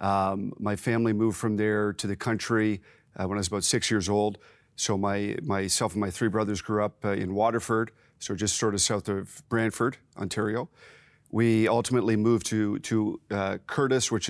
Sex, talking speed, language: male, 190 wpm, English